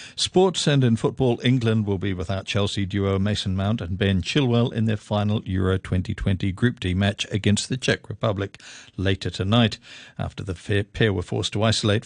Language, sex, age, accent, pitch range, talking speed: English, male, 50-69, British, 105-135 Hz, 180 wpm